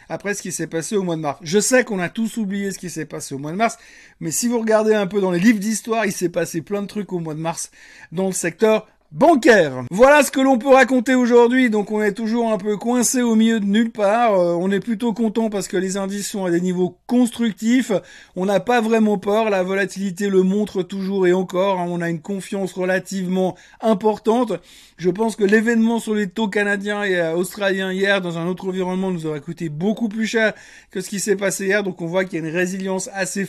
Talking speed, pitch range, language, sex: 240 wpm, 180-220 Hz, French, male